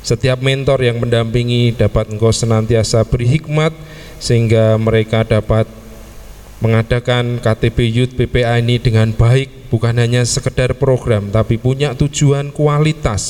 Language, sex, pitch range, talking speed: Indonesian, male, 115-135 Hz, 120 wpm